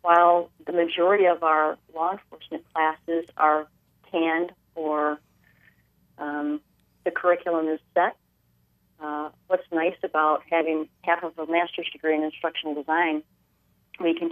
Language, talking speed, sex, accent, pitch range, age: English, 130 wpm, female, American, 150-170 Hz, 40-59